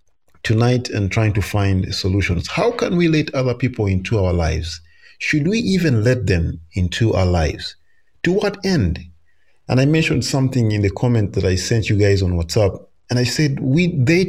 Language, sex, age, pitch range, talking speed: English, male, 40-59, 90-120 Hz, 190 wpm